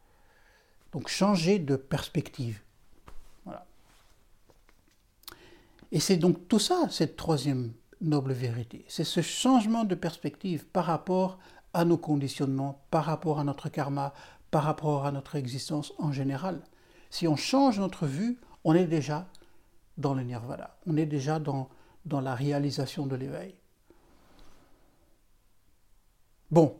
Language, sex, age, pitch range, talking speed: Dutch, male, 60-79, 140-185 Hz, 130 wpm